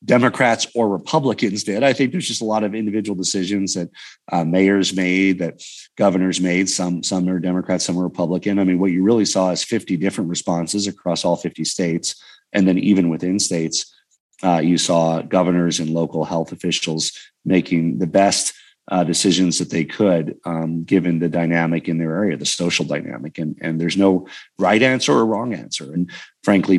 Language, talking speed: English, 185 wpm